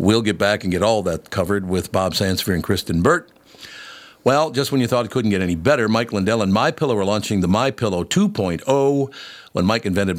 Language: English